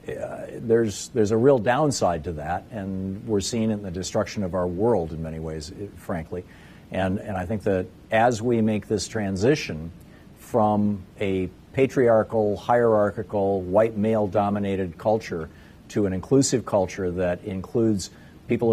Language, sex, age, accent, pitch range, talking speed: English, male, 50-69, American, 95-120 Hz, 145 wpm